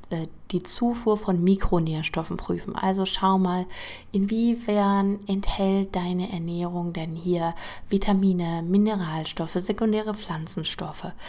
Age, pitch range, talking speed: 20-39, 165-200 Hz, 95 wpm